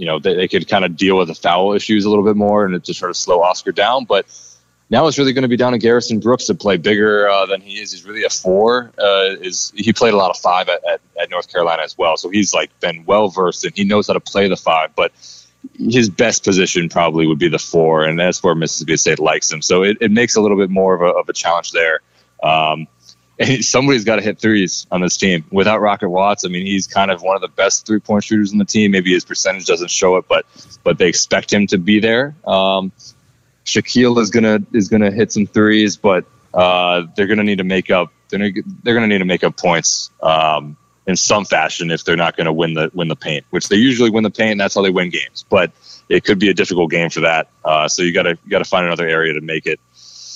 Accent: American